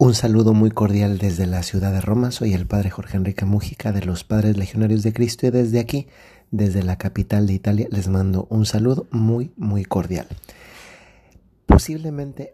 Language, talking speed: Spanish, 175 wpm